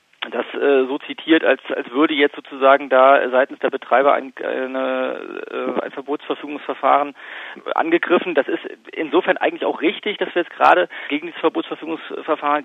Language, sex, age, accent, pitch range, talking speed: German, male, 40-59, German, 140-180 Hz, 145 wpm